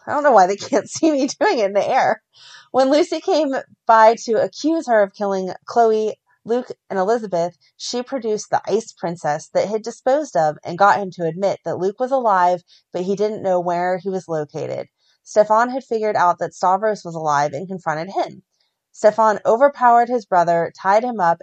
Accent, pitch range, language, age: American, 170-220 Hz, English, 30-49